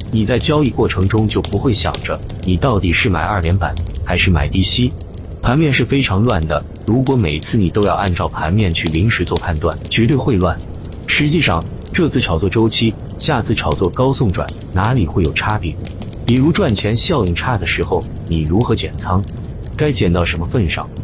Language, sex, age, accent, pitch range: Chinese, male, 30-49, native, 90-120 Hz